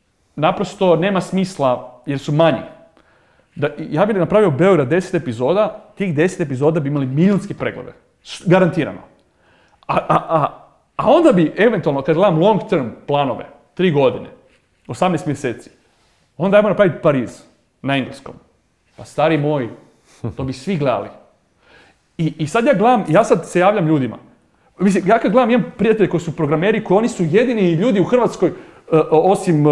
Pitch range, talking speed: 150-205 Hz, 150 wpm